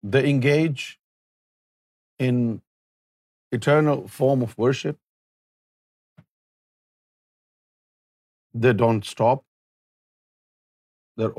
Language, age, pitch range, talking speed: Urdu, 50-69, 110-130 Hz, 60 wpm